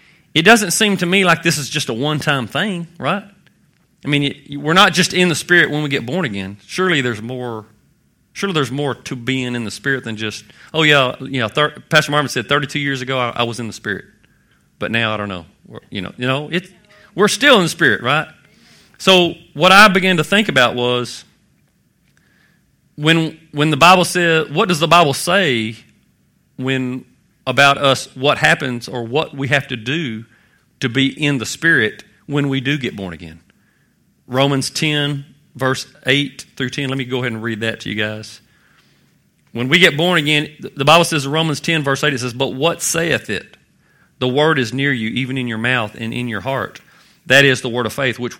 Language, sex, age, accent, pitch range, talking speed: English, male, 40-59, American, 120-155 Hz, 210 wpm